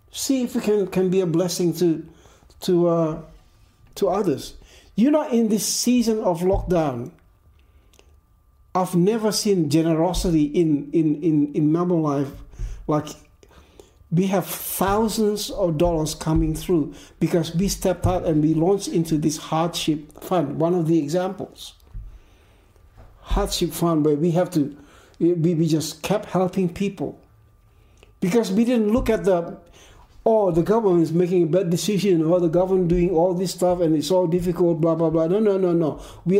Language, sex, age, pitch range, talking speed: English, male, 60-79, 145-190 Hz, 160 wpm